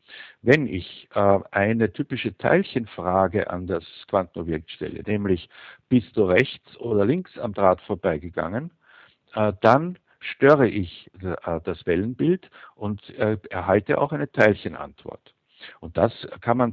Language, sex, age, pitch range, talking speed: German, male, 60-79, 95-125 Hz, 115 wpm